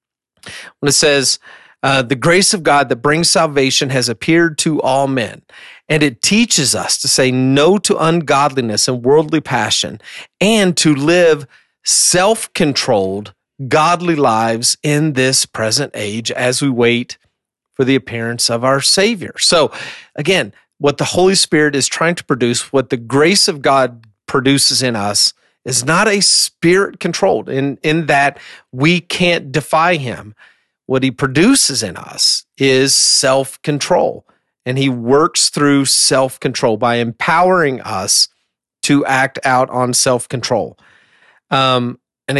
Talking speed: 140 wpm